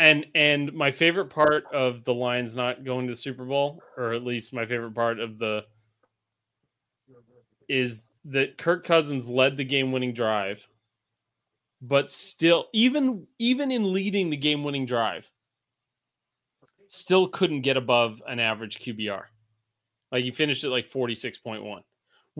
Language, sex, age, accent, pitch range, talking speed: English, male, 30-49, American, 115-145 Hz, 140 wpm